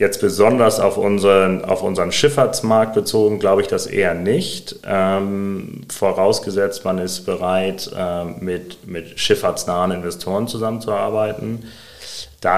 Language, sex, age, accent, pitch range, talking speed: German, male, 30-49, German, 90-105 Hz, 115 wpm